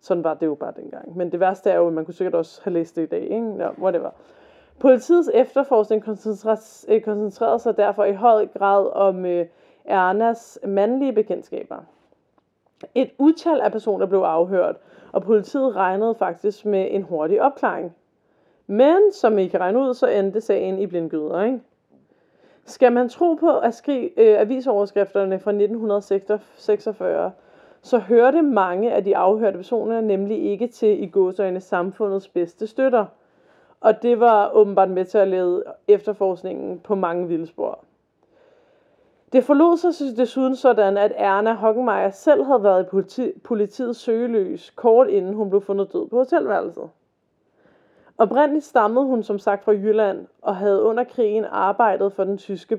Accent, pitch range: native, 195-250 Hz